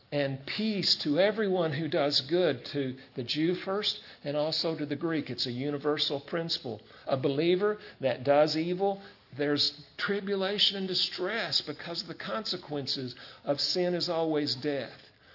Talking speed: 150 wpm